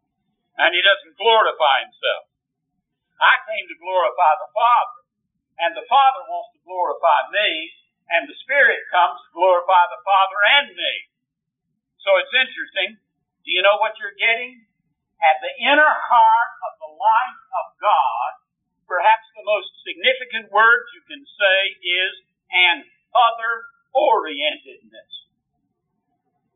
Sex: male